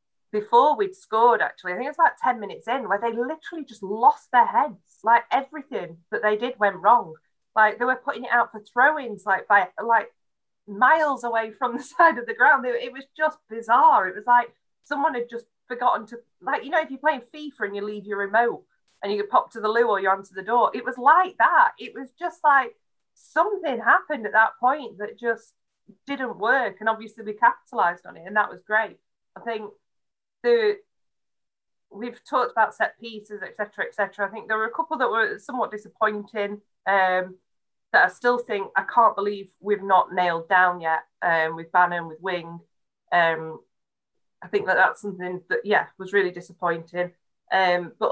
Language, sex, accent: English, female, British